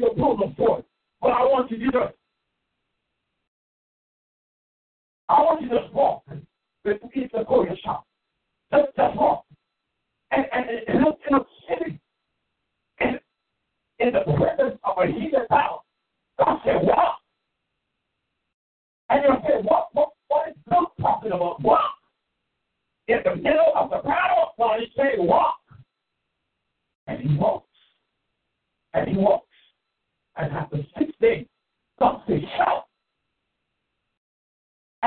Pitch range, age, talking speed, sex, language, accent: 230-310 Hz, 50-69, 115 wpm, male, English, American